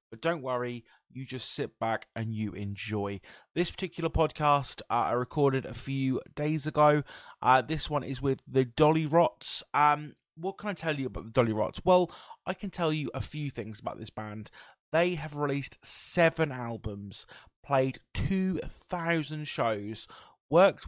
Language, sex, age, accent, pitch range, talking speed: English, male, 20-39, British, 120-165 Hz, 165 wpm